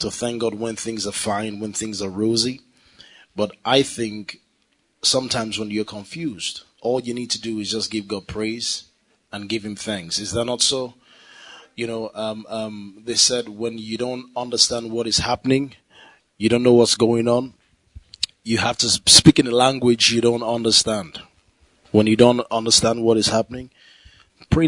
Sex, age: male, 20-39